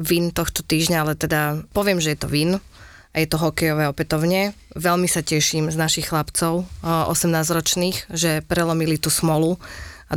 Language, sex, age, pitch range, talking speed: English, female, 30-49, 155-170 Hz, 160 wpm